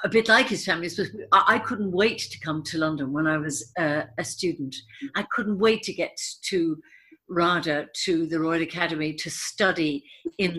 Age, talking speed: 60-79, 175 wpm